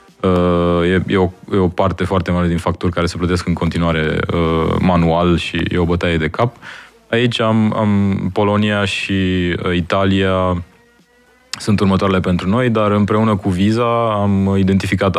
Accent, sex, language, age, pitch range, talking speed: native, male, Romanian, 20-39, 90-110 Hz, 160 wpm